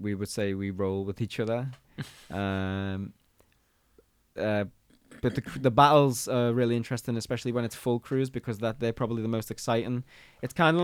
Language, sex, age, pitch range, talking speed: English, male, 20-39, 105-125 Hz, 175 wpm